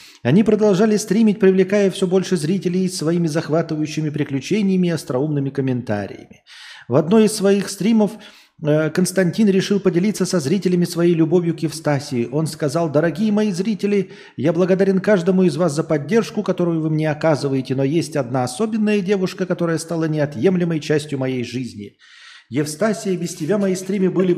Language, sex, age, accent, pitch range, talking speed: Russian, male, 40-59, native, 150-195 Hz, 150 wpm